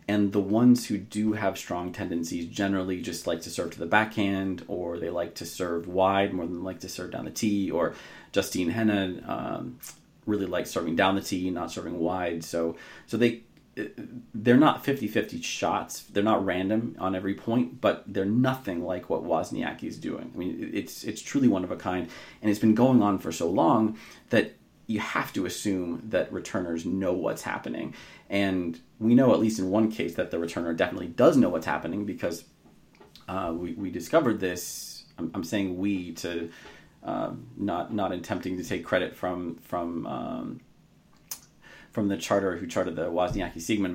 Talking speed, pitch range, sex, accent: 185 wpm, 85-105 Hz, male, American